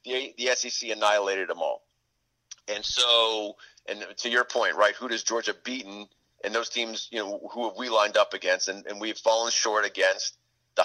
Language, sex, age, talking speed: English, male, 40-59, 195 wpm